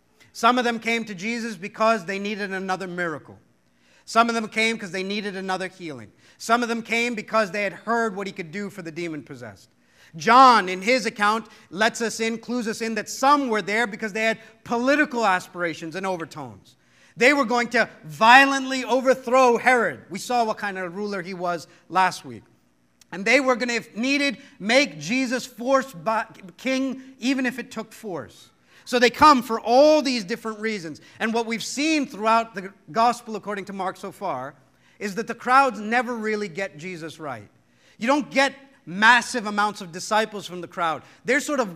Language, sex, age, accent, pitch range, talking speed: English, male, 40-59, American, 165-235 Hz, 185 wpm